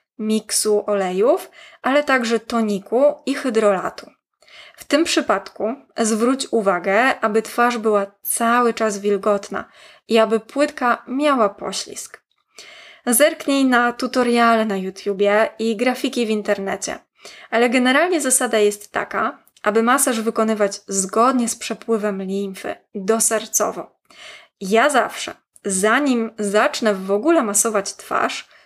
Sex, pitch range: female, 210-255 Hz